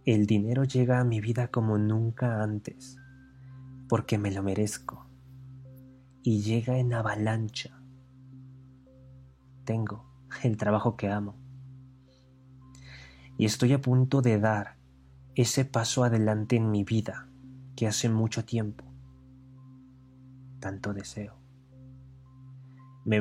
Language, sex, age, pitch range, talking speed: Spanish, male, 20-39, 110-130 Hz, 105 wpm